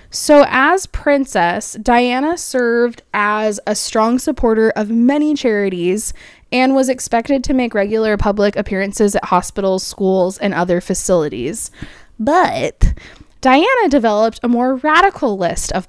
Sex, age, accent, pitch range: female, 20-39, American, 200-255 Hz